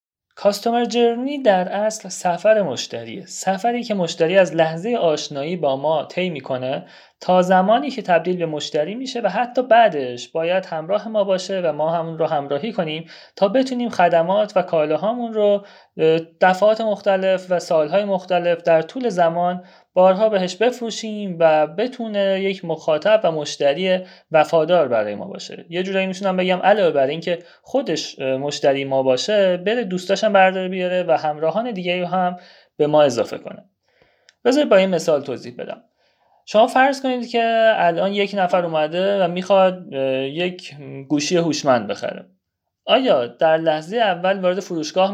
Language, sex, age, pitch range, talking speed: Persian, male, 30-49, 155-200 Hz, 150 wpm